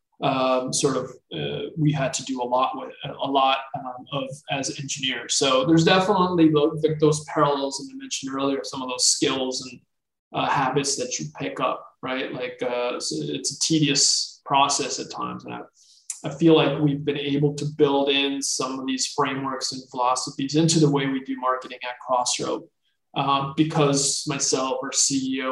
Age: 20-39